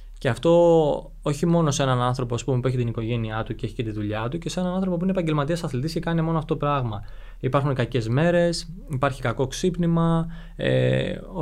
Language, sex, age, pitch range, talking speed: Greek, male, 20-39, 120-165 Hz, 215 wpm